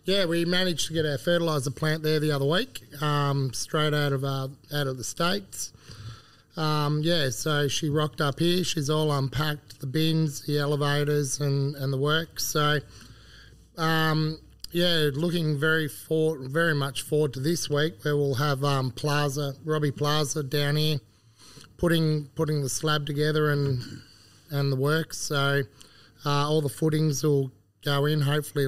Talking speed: 165 wpm